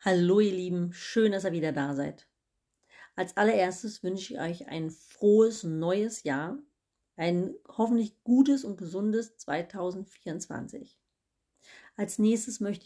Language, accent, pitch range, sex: German, German, 185-225 Hz, female